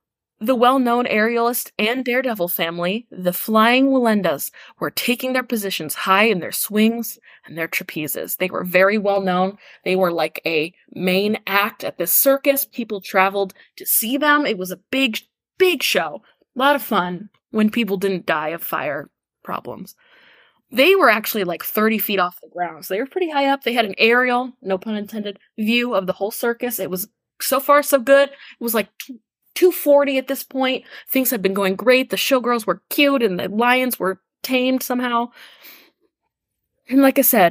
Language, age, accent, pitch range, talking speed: English, 20-39, American, 190-265 Hz, 180 wpm